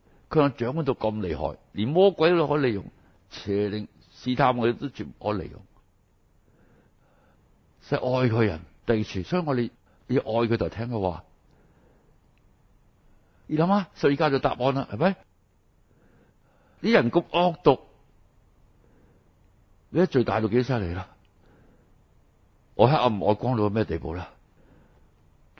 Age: 60-79